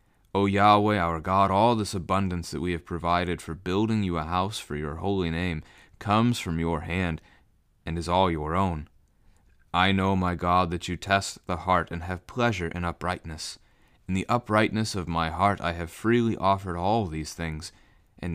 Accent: American